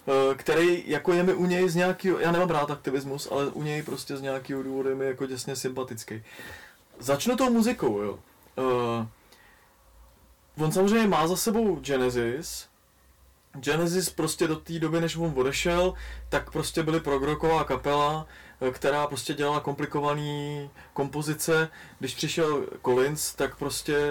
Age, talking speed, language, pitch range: 20-39, 145 wpm, Czech, 130-170 Hz